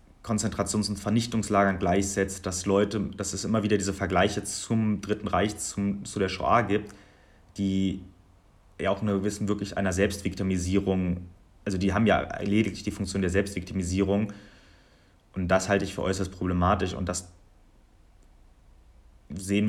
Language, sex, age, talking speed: German, male, 30-49, 145 wpm